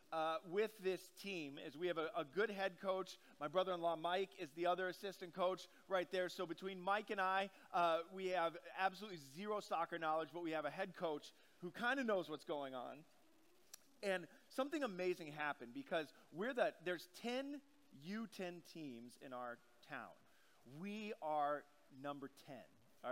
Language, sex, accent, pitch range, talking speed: English, male, American, 145-195 Hz, 170 wpm